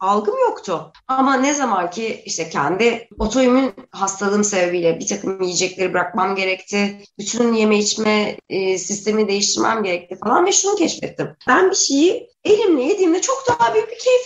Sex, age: female, 30-49